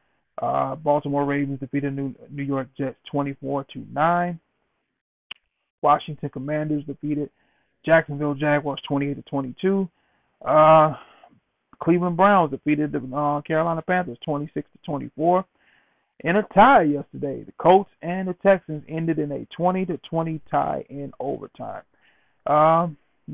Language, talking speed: English, 125 wpm